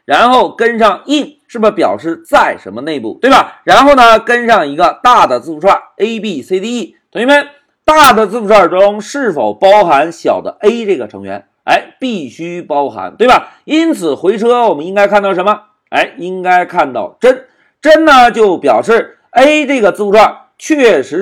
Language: Chinese